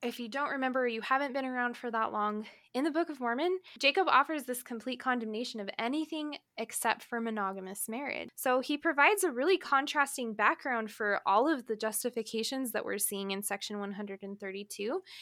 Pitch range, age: 215-260 Hz, 10-29